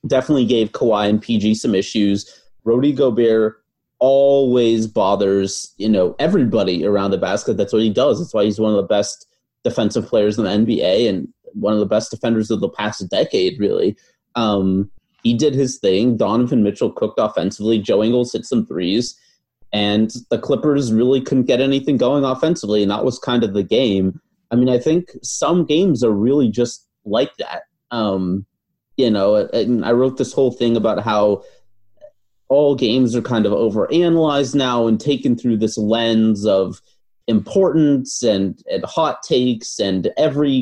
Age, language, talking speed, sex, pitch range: 30-49, English, 170 wpm, male, 105-135 Hz